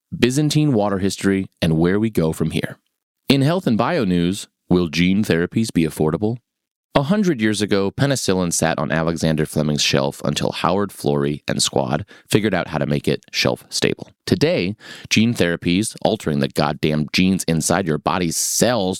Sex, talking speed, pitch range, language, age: male, 165 wpm, 85-115 Hz, English, 30-49